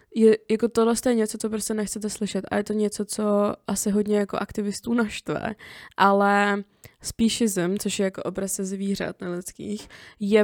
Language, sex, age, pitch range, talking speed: Czech, female, 20-39, 195-210 Hz, 165 wpm